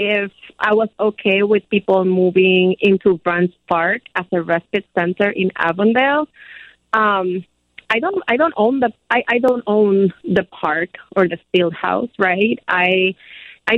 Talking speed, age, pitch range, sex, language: 155 wpm, 30-49, 185-225 Hz, female, English